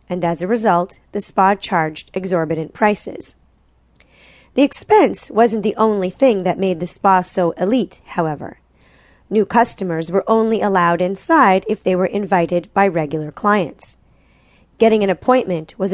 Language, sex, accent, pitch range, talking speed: English, female, American, 170-225 Hz, 145 wpm